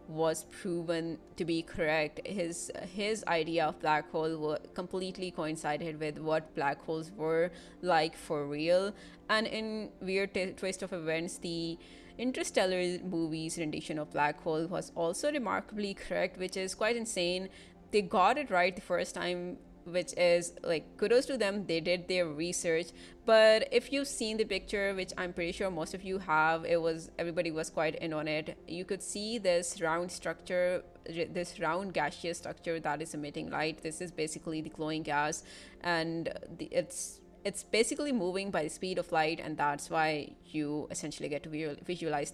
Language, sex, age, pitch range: English, female, 20-39, 160-190 Hz